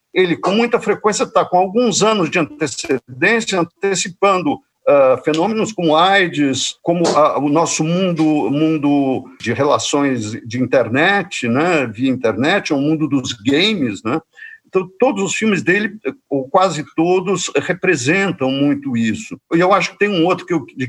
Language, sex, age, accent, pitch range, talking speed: Portuguese, male, 50-69, Brazilian, 150-210 Hz, 145 wpm